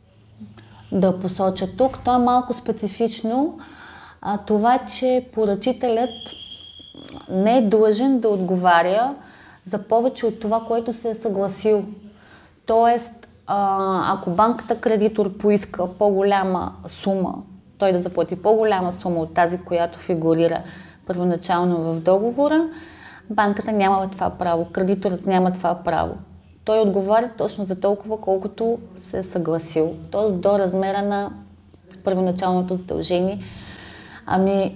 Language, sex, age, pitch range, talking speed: Bulgarian, female, 20-39, 180-220 Hz, 115 wpm